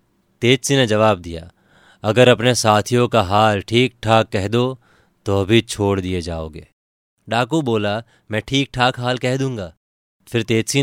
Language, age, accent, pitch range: Hindi, 30-49, native, 100-130 Hz